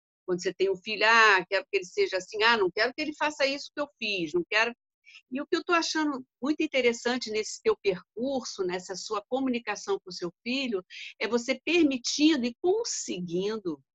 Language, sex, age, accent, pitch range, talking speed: Portuguese, female, 50-69, Brazilian, 185-290 Hz, 200 wpm